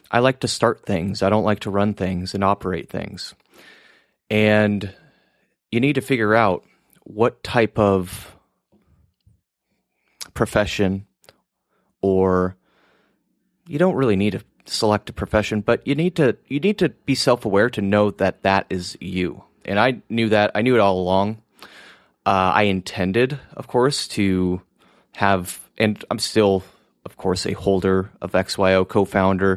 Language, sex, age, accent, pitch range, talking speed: English, male, 30-49, American, 95-125 Hz, 150 wpm